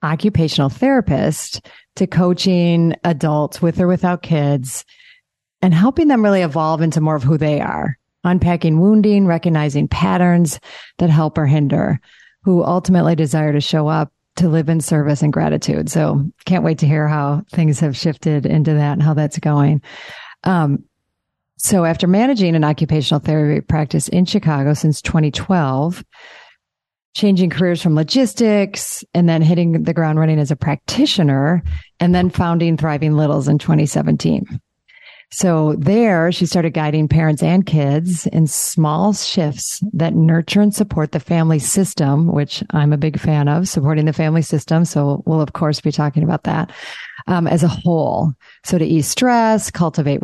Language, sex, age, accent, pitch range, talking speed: English, female, 40-59, American, 150-180 Hz, 160 wpm